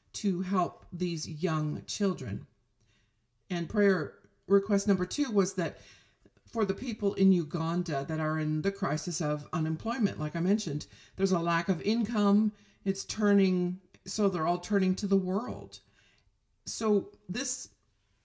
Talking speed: 140 wpm